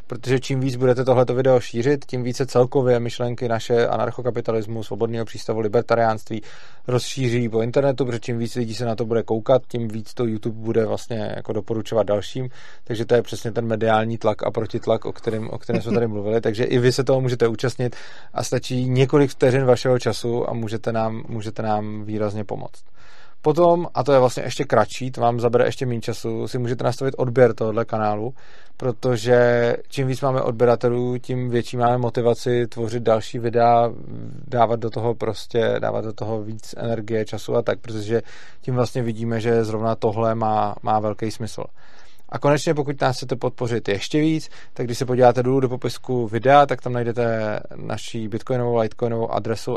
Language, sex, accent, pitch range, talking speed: Czech, male, native, 115-125 Hz, 180 wpm